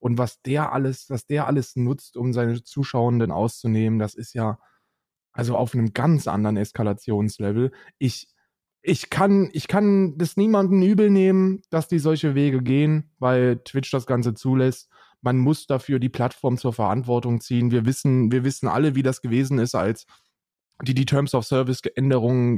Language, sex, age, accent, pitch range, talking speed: German, male, 20-39, German, 110-130 Hz, 160 wpm